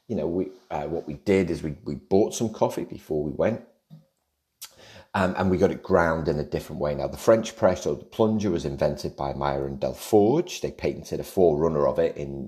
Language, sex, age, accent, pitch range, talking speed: English, male, 30-49, British, 75-110 Hz, 225 wpm